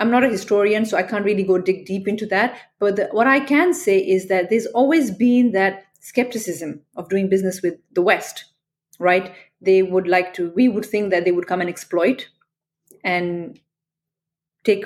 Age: 30-49